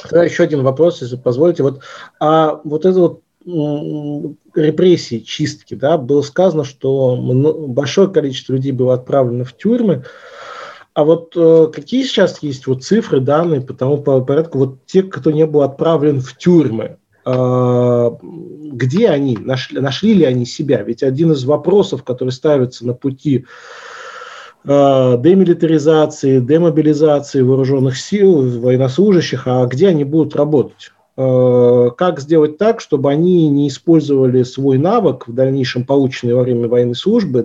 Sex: male